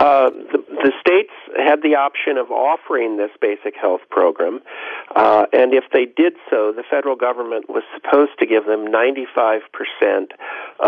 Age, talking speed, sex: 50-69, 155 wpm, male